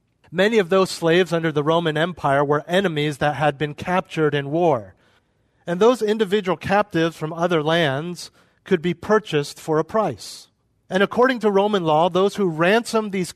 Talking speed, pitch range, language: 170 wpm, 150-190 Hz, English